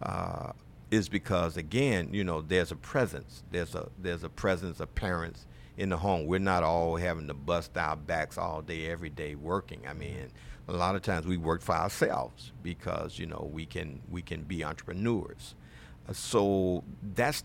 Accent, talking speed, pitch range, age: American, 180 wpm, 80-100 Hz, 50-69